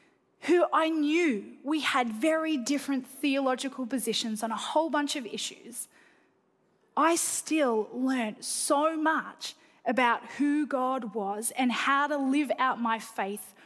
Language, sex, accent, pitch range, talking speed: English, female, Australian, 240-310 Hz, 135 wpm